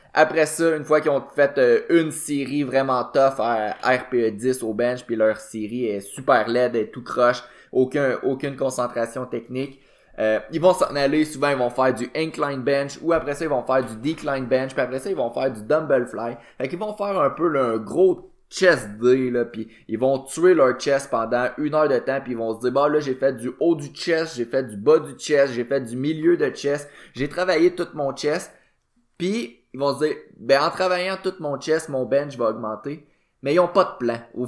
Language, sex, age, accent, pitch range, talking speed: French, male, 20-39, Canadian, 125-160 Hz, 235 wpm